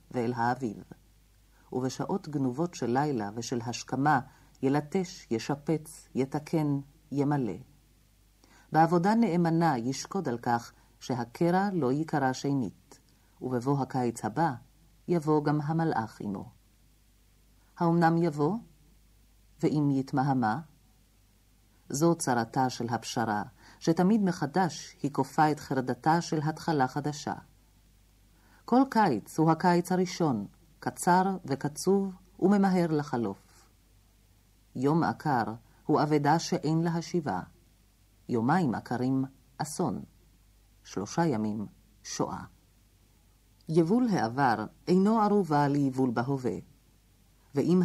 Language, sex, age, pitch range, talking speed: Hebrew, female, 50-69, 110-160 Hz, 90 wpm